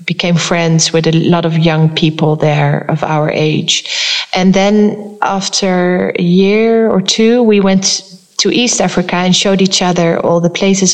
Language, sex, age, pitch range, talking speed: English, female, 30-49, 175-205 Hz, 170 wpm